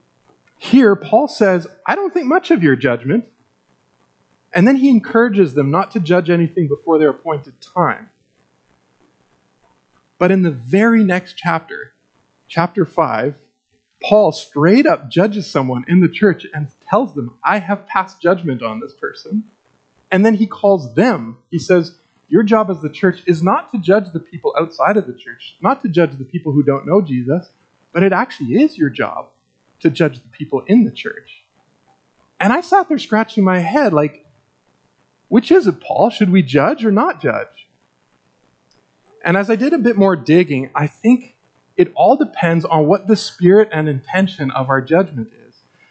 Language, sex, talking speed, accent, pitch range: English, male, 175 wpm, American, 140-210 Hz